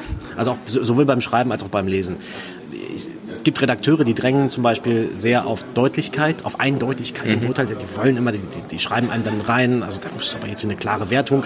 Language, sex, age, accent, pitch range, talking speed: German, male, 30-49, German, 115-140 Hz, 210 wpm